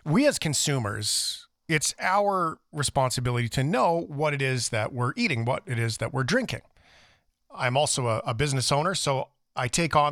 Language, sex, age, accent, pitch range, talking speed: English, male, 40-59, American, 120-150 Hz, 180 wpm